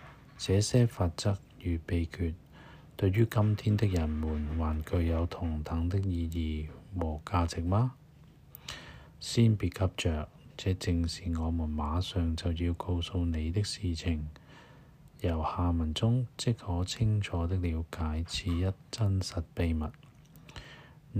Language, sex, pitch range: Chinese, male, 85-105 Hz